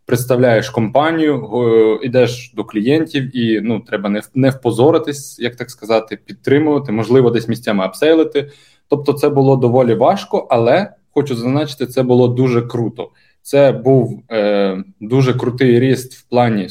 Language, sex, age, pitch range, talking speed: Ukrainian, male, 20-39, 110-140 Hz, 135 wpm